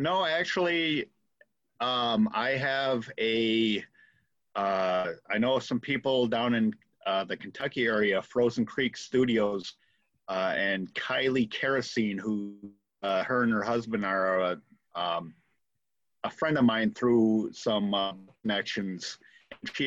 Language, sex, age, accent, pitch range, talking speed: English, male, 40-59, American, 100-125 Hz, 125 wpm